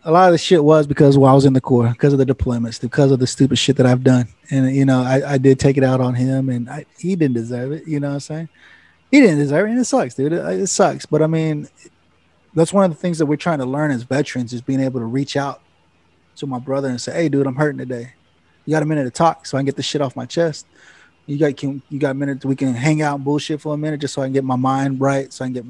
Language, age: English, 20-39